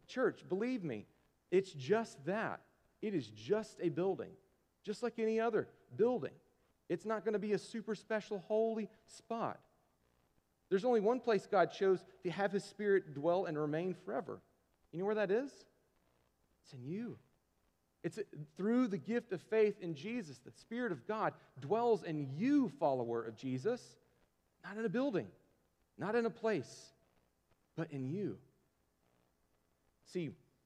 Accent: American